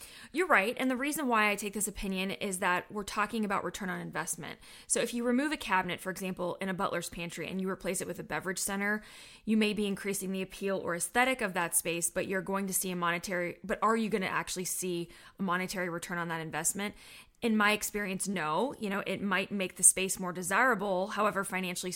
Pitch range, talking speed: 180-210 Hz, 230 wpm